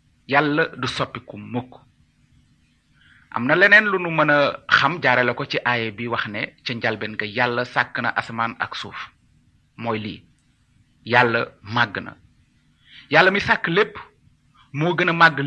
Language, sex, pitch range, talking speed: Italian, male, 125-175 Hz, 105 wpm